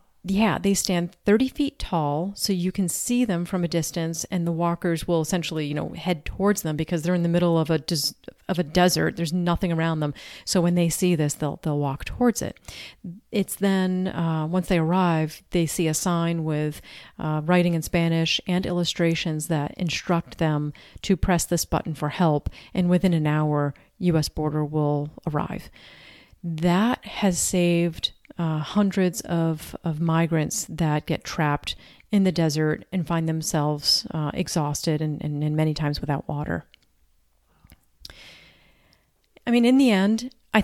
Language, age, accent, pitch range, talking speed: English, 40-59, American, 155-190 Hz, 170 wpm